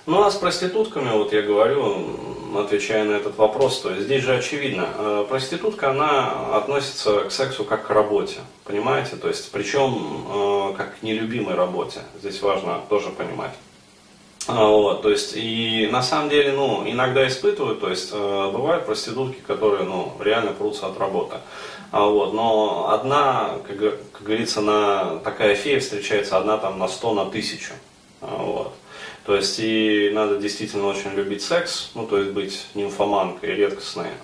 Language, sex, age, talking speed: Russian, male, 30-49, 155 wpm